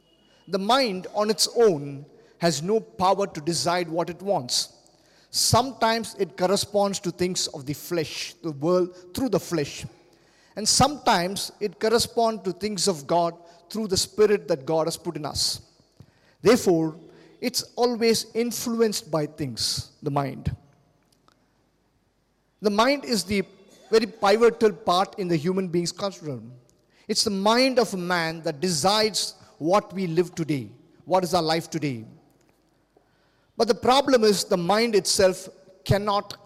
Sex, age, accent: male, 50-69, Indian